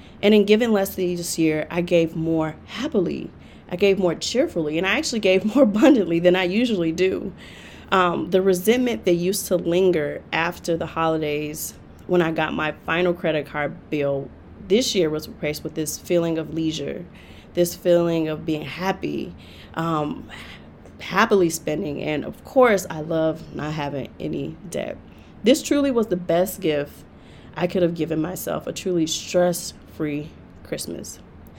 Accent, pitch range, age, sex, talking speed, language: American, 155-190 Hz, 30-49, female, 160 wpm, English